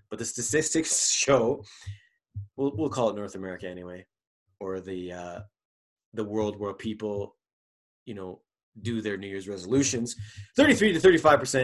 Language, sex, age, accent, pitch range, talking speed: English, male, 30-49, American, 105-130 Hz, 135 wpm